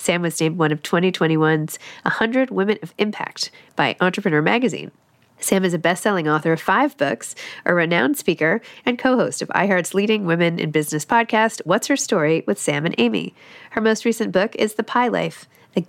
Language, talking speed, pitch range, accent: English, 185 wpm, 165-220 Hz, American